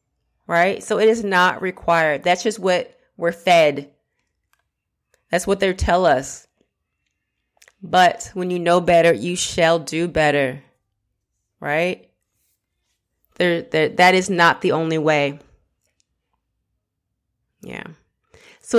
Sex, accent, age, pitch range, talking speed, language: female, American, 30-49, 160-215 Hz, 110 wpm, English